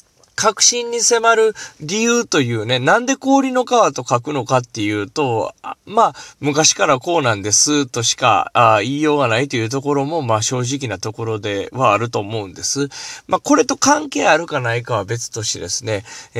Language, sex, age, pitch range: Japanese, male, 20-39, 110-160 Hz